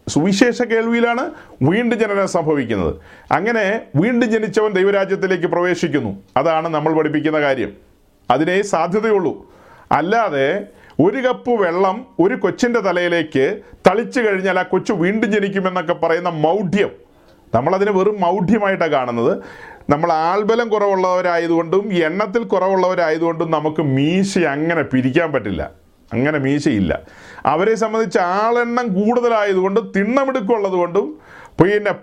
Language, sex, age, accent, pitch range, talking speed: Malayalam, male, 40-59, native, 170-230 Hz, 100 wpm